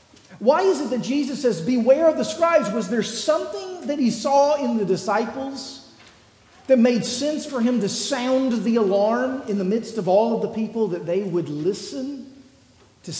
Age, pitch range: 50-69, 185-260 Hz